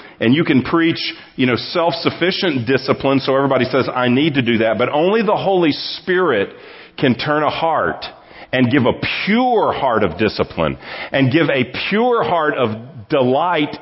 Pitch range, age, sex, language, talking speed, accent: 115-145 Hz, 40-59, male, English, 170 wpm, American